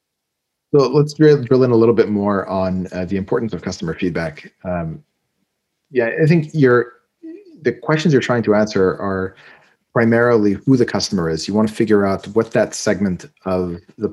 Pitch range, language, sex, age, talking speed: 90-115 Hz, English, male, 30-49, 180 wpm